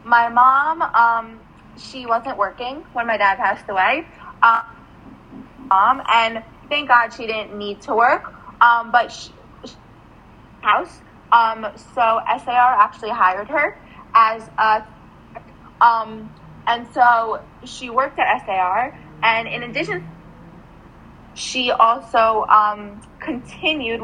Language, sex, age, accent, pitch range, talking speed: English, female, 20-39, American, 210-250 Hz, 115 wpm